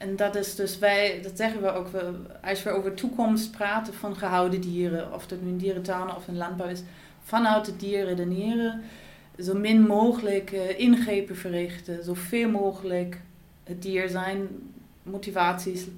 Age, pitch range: 30-49, 175-195 Hz